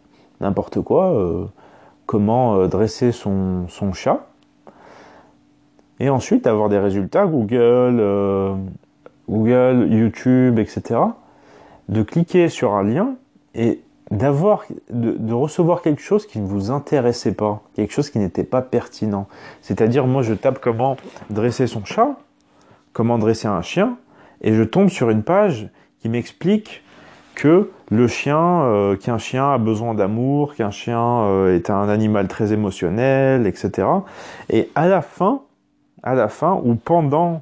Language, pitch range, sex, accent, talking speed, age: French, 105-145 Hz, male, French, 145 wpm, 30-49